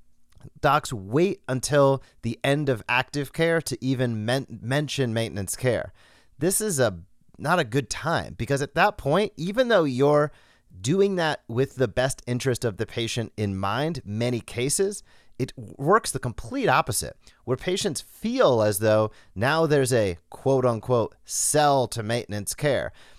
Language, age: English, 30-49